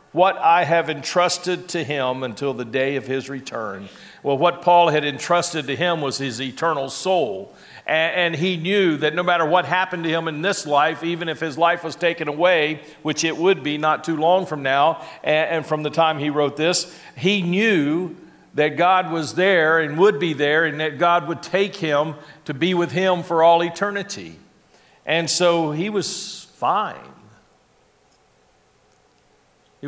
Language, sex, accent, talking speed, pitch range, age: English, male, American, 180 wpm, 140-175 Hz, 50-69